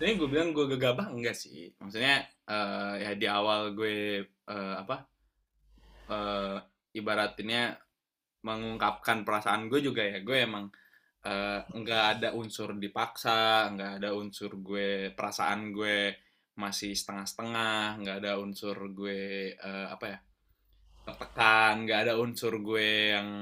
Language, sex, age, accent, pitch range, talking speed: Indonesian, male, 20-39, native, 100-120 Hz, 130 wpm